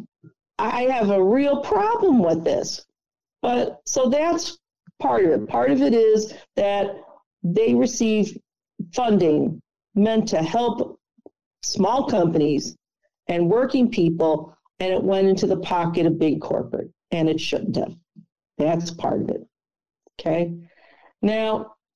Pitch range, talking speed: 170-235 Hz, 130 wpm